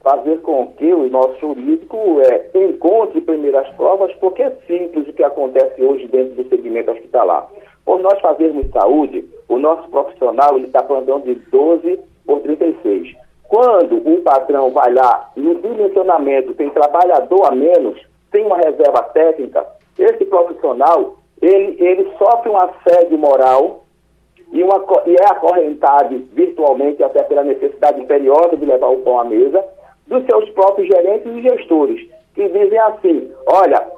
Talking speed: 150 wpm